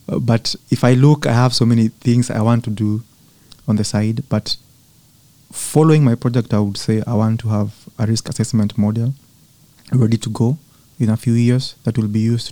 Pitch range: 110-135 Hz